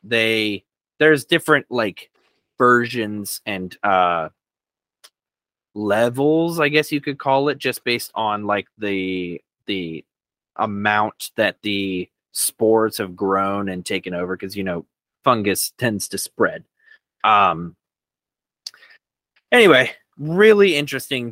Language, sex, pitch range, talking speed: English, male, 100-130 Hz, 115 wpm